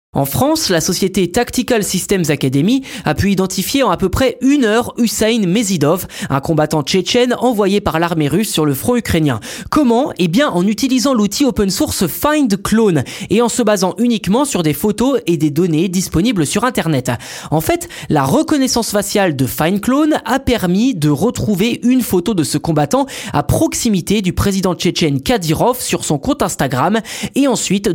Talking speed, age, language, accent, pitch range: 170 wpm, 20-39, French, French, 160-240 Hz